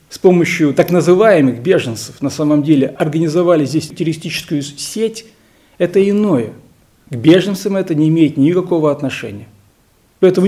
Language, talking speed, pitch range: Russian, 125 wpm, 120-175 Hz